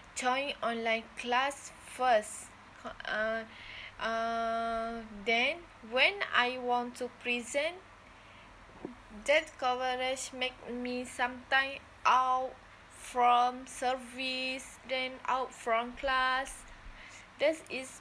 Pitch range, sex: 225-255 Hz, female